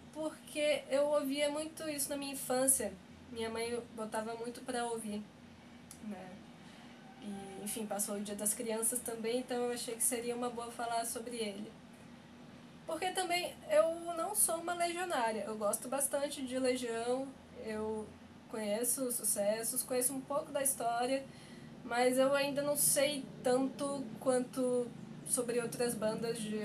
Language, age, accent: Portuguese, 10-29, Brazilian